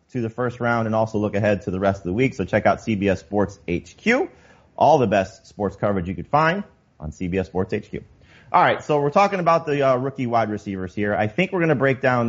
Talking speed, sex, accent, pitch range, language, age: 250 wpm, male, American, 100-135 Hz, English, 30-49